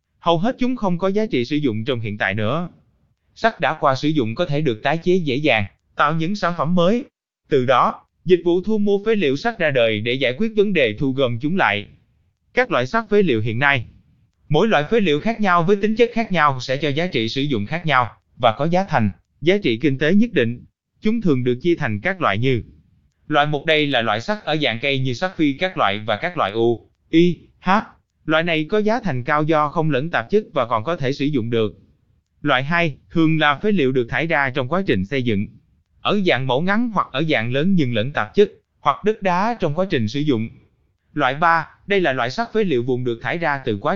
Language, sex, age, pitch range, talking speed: Vietnamese, male, 20-39, 120-185 Hz, 245 wpm